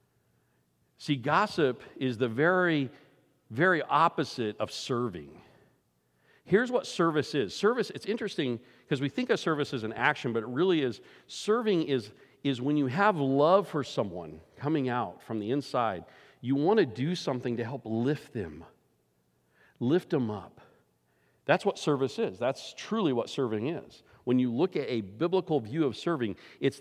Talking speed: 165 wpm